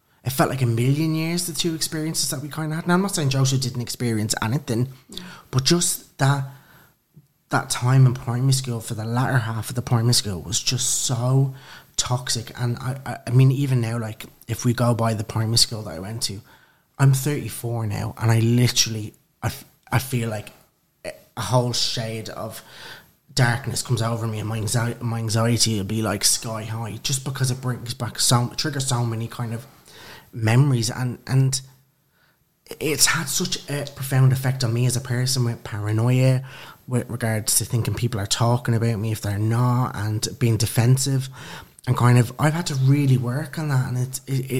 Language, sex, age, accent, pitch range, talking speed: English, male, 20-39, British, 115-135 Hz, 190 wpm